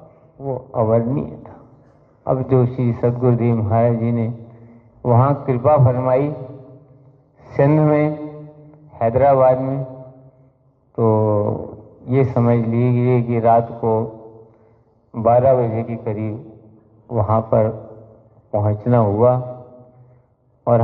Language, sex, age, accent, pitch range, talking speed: Hindi, male, 50-69, native, 115-130 Hz, 95 wpm